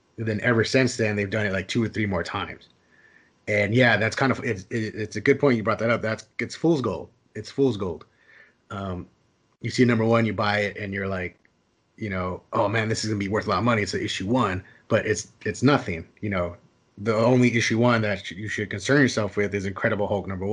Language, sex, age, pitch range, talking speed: English, male, 30-49, 100-120 Hz, 235 wpm